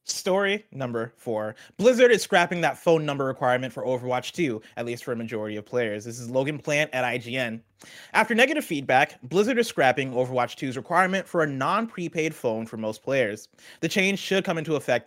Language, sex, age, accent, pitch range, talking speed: English, male, 30-49, American, 125-185 Hz, 190 wpm